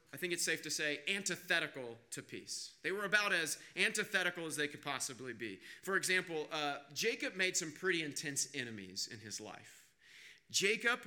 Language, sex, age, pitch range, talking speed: English, male, 40-59, 145-185 Hz, 175 wpm